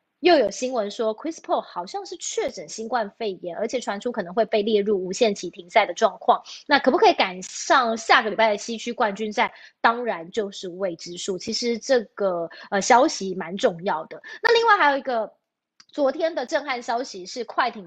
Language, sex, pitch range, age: Chinese, female, 200-260 Hz, 20-39